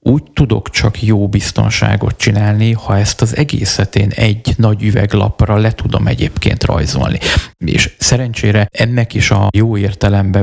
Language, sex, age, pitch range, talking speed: Hungarian, male, 30-49, 105-120 Hz, 140 wpm